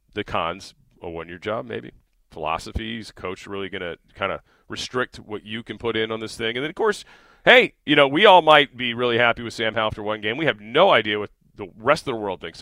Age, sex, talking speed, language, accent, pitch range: 40-59, male, 245 wpm, English, American, 100-120 Hz